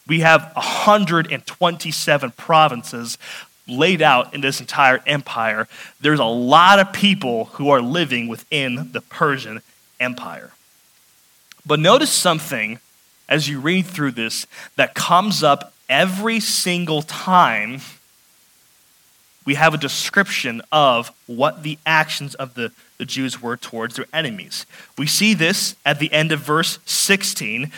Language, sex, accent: English, male, American